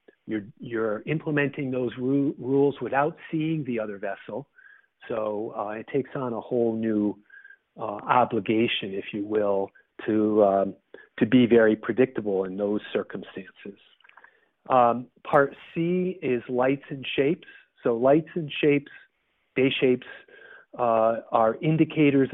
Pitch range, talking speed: 105-140 Hz, 130 wpm